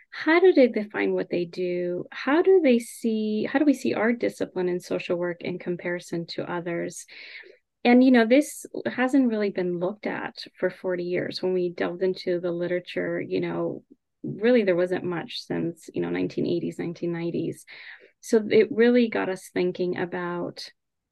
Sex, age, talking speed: female, 30-49, 170 wpm